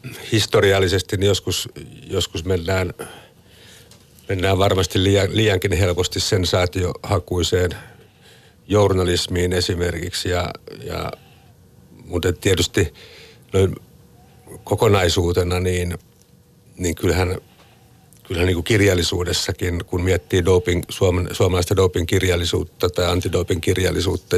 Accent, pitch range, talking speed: native, 90-100 Hz, 75 wpm